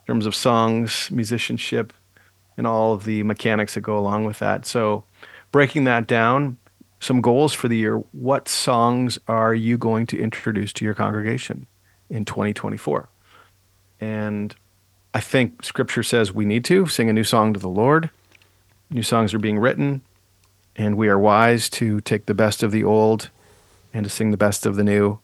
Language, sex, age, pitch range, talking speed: English, male, 40-59, 105-120 Hz, 180 wpm